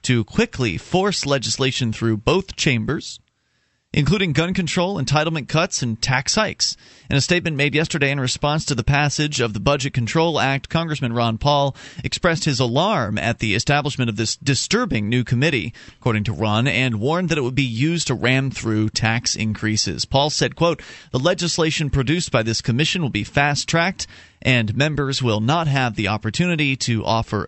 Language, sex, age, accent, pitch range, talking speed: English, male, 30-49, American, 115-150 Hz, 175 wpm